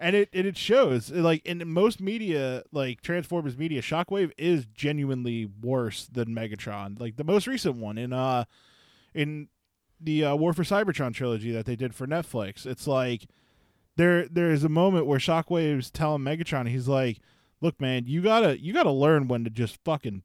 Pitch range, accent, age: 125-160 Hz, American, 20-39